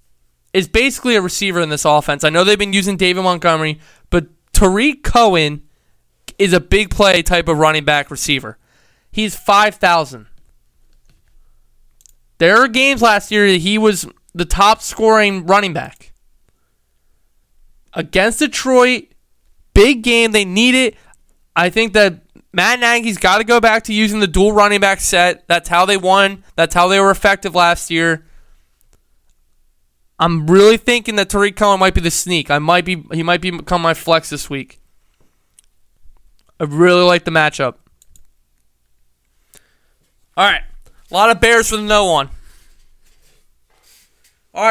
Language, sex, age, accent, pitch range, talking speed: English, male, 20-39, American, 140-200 Hz, 150 wpm